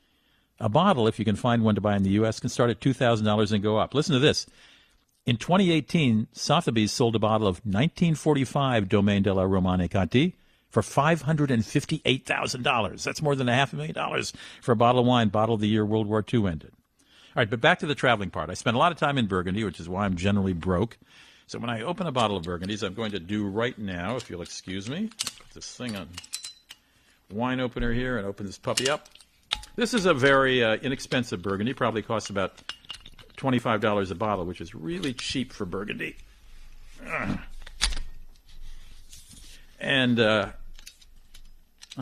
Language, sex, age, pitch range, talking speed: English, male, 50-69, 100-135 Hz, 185 wpm